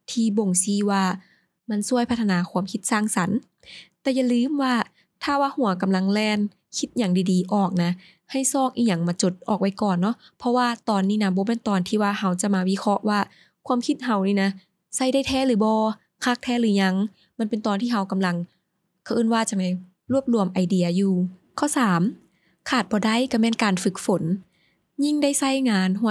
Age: 20-39